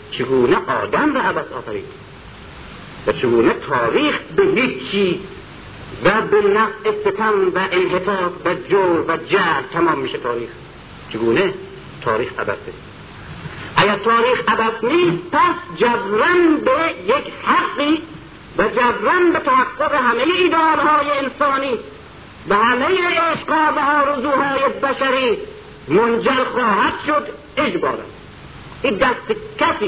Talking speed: 110 wpm